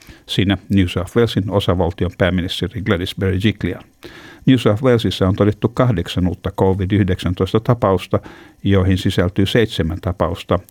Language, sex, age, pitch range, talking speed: Finnish, male, 60-79, 90-110 Hz, 110 wpm